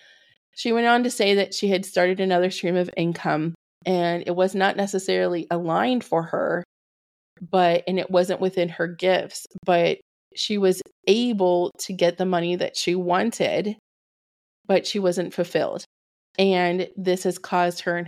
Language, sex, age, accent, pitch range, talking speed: English, female, 20-39, American, 175-195 Hz, 165 wpm